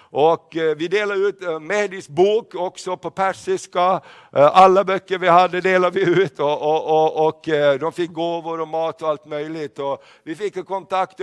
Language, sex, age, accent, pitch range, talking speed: Swedish, male, 60-79, native, 165-190 Hz, 175 wpm